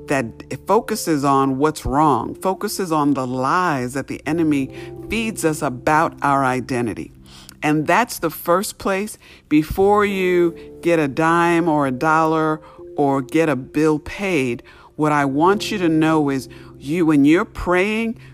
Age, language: 50-69, English